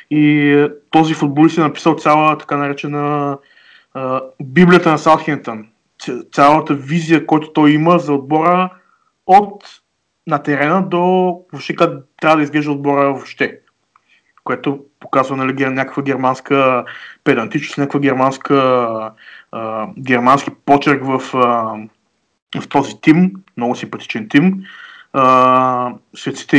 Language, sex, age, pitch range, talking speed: Bulgarian, male, 20-39, 130-155 Hz, 105 wpm